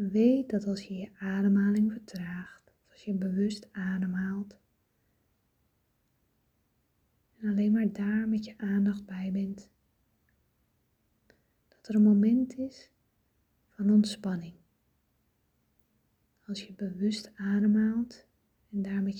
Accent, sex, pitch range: Dutch, female, 190-215 Hz